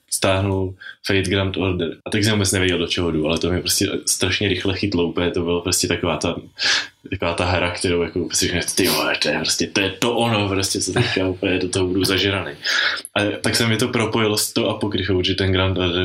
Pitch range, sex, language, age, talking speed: 90-100 Hz, male, Czech, 20-39, 215 wpm